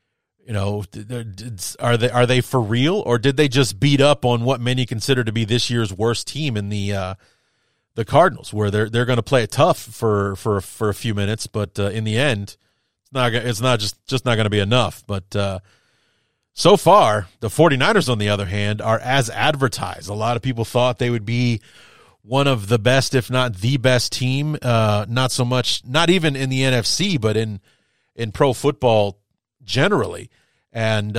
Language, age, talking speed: English, 30-49, 200 wpm